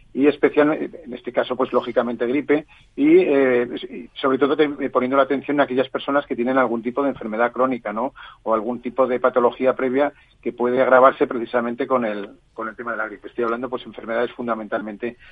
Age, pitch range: 40-59, 120-140 Hz